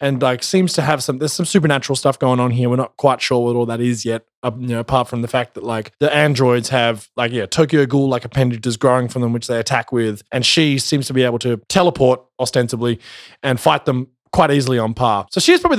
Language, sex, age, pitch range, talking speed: English, male, 20-39, 125-185 Hz, 245 wpm